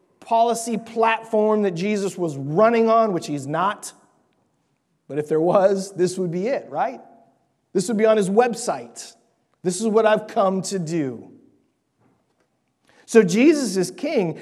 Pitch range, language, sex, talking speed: 150-210 Hz, English, male, 150 wpm